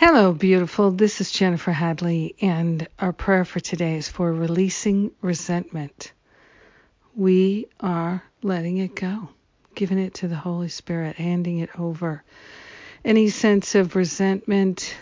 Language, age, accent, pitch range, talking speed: English, 50-69, American, 170-190 Hz, 130 wpm